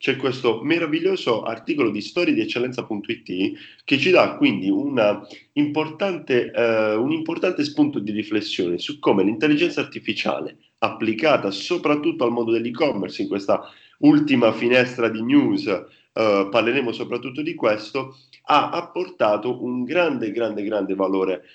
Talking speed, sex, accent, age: 125 wpm, male, native, 40-59